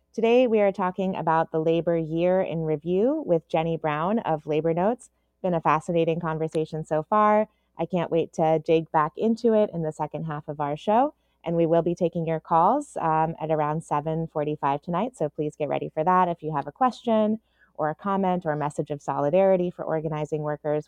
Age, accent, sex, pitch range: 20-39, American, female, 155-195 Hz